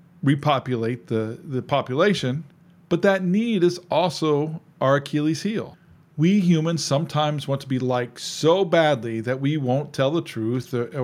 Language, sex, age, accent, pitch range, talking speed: English, male, 40-59, American, 130-170 Hz, 150 wpm